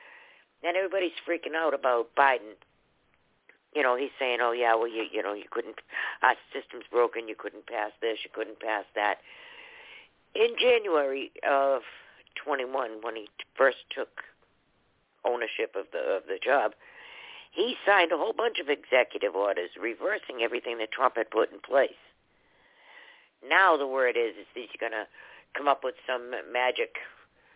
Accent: American